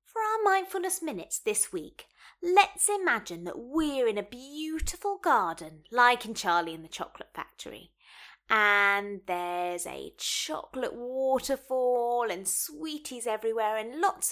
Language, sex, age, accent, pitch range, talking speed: English, female, 20-39, British, 180-300 Hz, 130 wpm